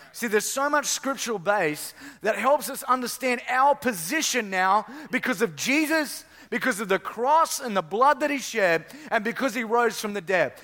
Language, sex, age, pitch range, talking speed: English, male, 30-49, 200-270 Hz, 185 wpm